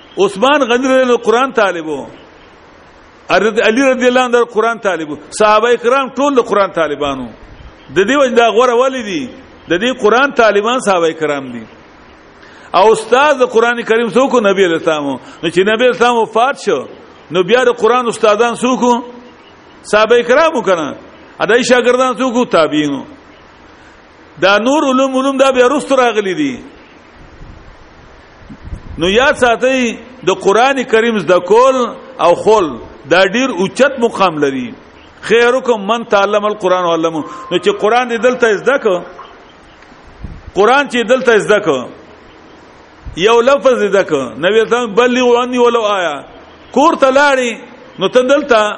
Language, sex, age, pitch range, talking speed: English, male, 50-69, 200-255 Hz, 105 wpm